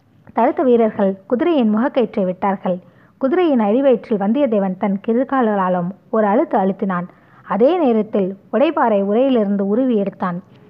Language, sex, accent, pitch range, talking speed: Tamil, female, native, 200-245 Hz, 105 wpm